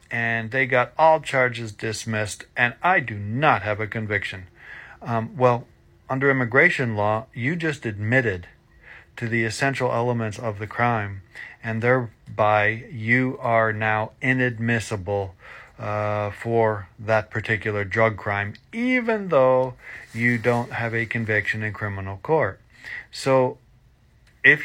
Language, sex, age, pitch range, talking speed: English, male, 40-59, 110-135 Hz, 125 wpm